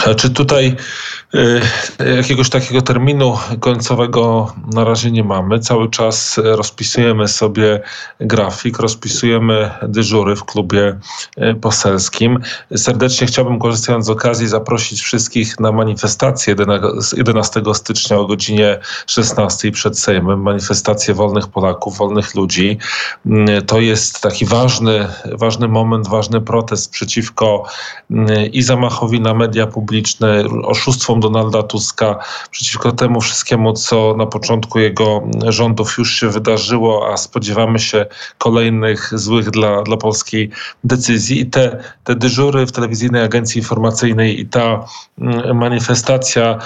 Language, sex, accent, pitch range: Polish, male, native, 110-120 Hz